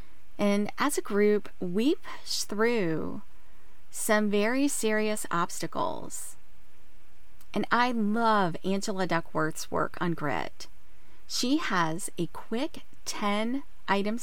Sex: female